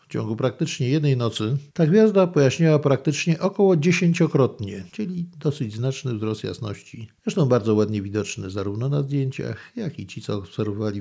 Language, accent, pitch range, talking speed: Polish, native, 110-150 Hz, 155 wpm